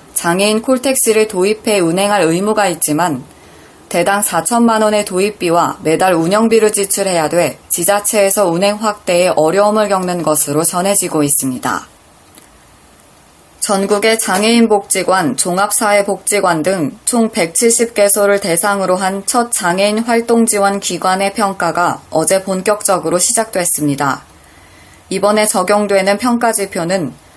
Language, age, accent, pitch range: Korean, 20-39, native, 175-215 Hz